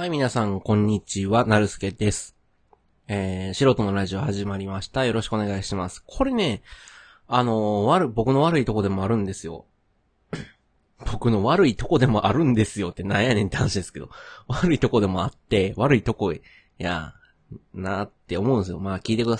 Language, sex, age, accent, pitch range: Japanese, male, 20-39, native, 95-130 Hz